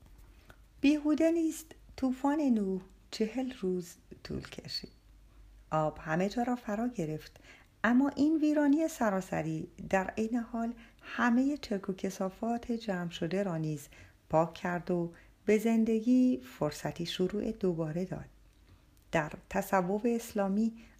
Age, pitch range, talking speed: 50-69, 170-235 Hz, 115 wpm